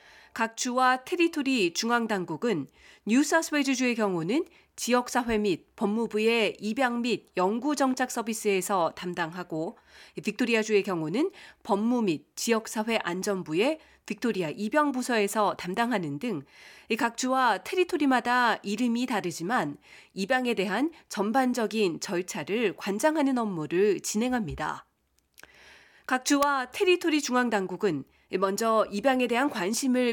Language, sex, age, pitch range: Korean, female, 40-59, 200-265 Hz